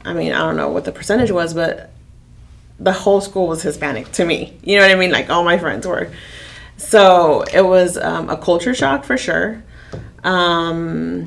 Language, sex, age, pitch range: English, female, 30-49, 160-190 Hz